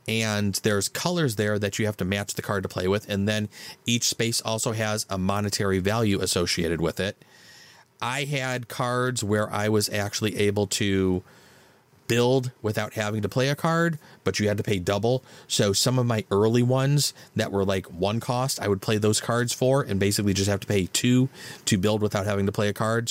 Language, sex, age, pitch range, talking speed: English, male, 30-49, 100-130 Hz, 210 wpm